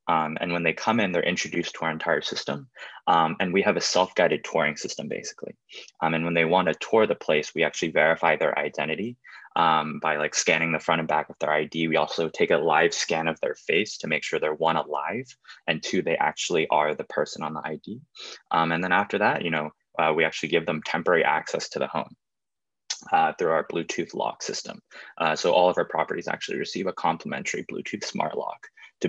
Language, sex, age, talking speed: English, male, 20-39, 225 wpm